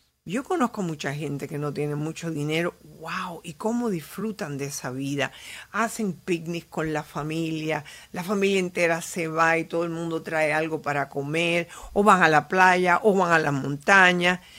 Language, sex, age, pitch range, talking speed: Spanish, female, 50-69, 150-200 Hz, 180 wpm